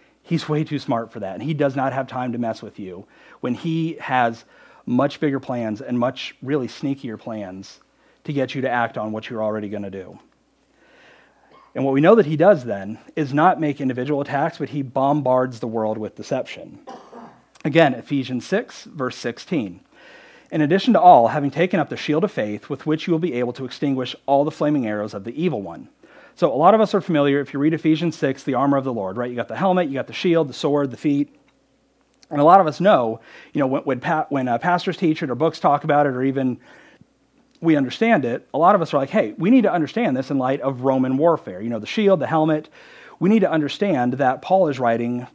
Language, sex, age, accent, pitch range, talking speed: English, male, 40-59, American, 125-165 Hz, 235 wpm